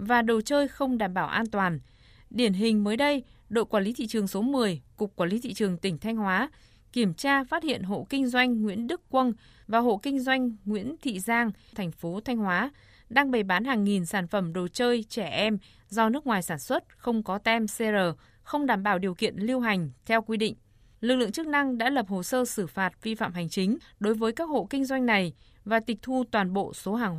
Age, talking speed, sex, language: 20-39, 235 wpm, female, Vietnamese